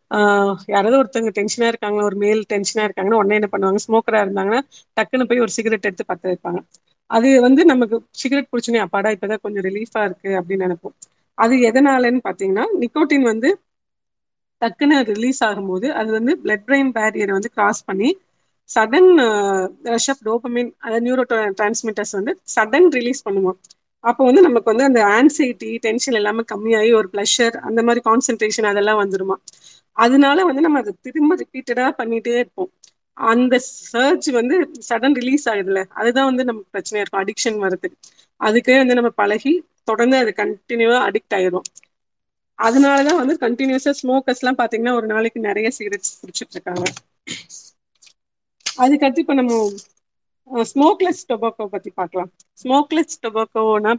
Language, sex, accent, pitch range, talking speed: Tamil, female, native, 205-255 Hz, 140 wpm